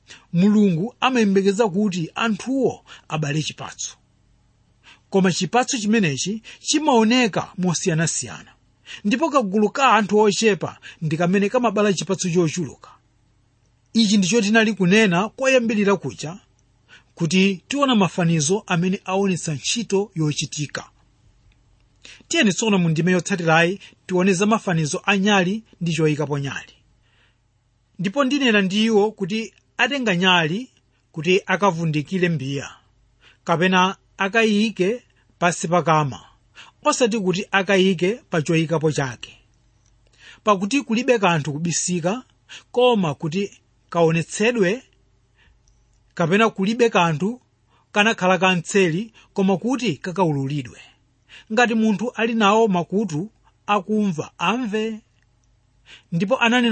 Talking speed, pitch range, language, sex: 90 wpm, 155-215 Hz, English, male